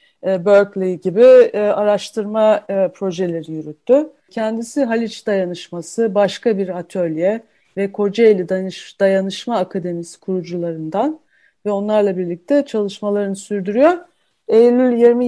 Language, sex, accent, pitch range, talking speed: Turkish, female, native, 195-240 Hz, 85 wpm